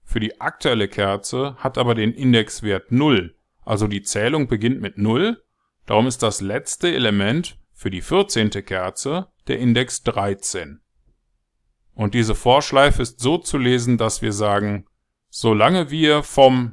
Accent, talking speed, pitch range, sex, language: German, 145 wpm, 115-155 Hz, male, German